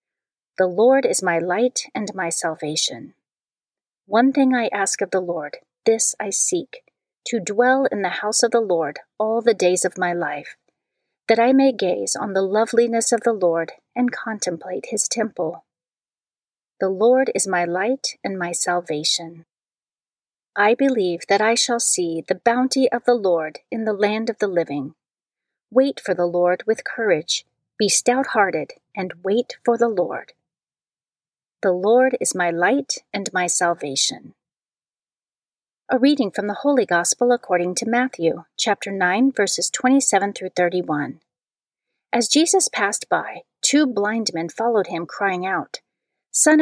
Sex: female